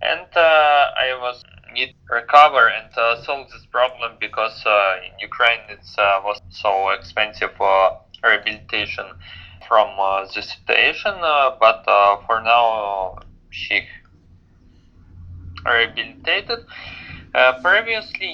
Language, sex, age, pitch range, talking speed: English, male, 20-39, 95-125 Hz, 120 wpm